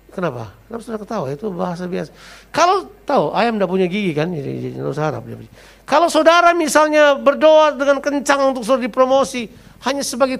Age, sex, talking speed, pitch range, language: 50-69, male, 150 wpm, 160-260 Hz, Indonesian